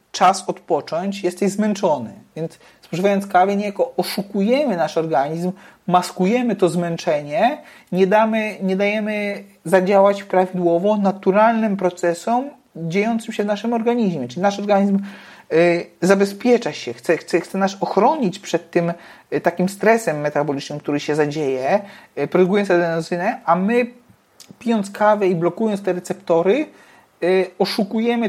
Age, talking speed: 40-59, 115 wpm